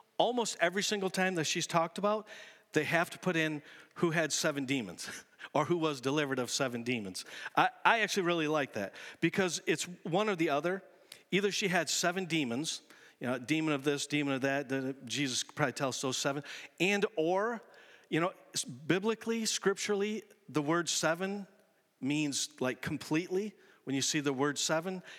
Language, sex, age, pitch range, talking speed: English, male, 50-69, 145-185 Hz, 175 wpm